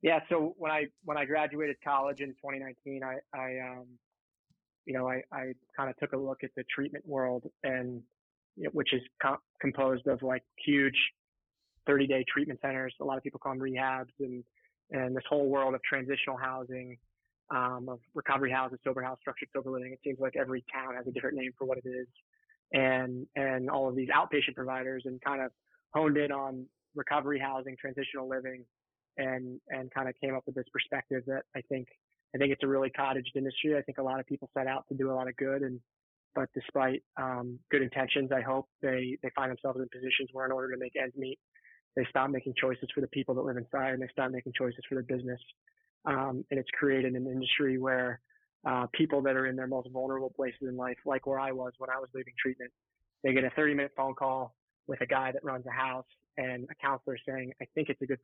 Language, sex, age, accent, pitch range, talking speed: English, male, 20-39, American, 130-140 Hz, 220 wpm